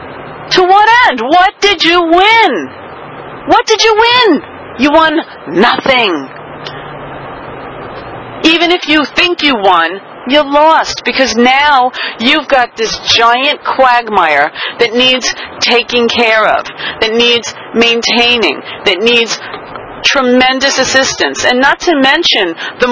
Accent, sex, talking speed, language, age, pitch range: American, female, 120 wpm, English, 40-59, 220-320 Hz